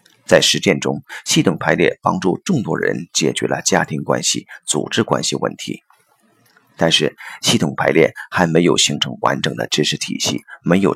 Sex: male